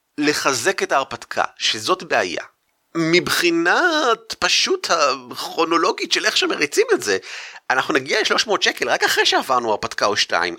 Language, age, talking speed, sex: Hebrew, 30-49, 130 wpm, male